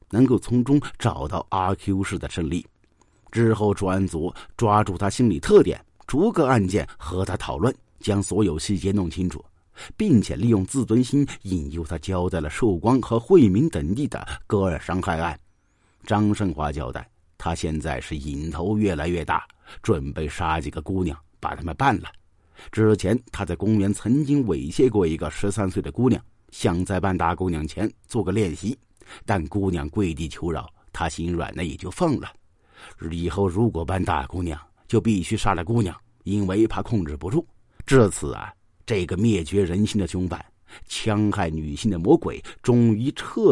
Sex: male